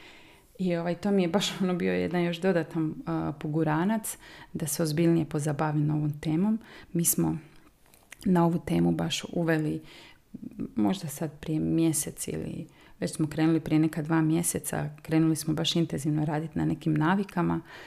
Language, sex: Croatian, female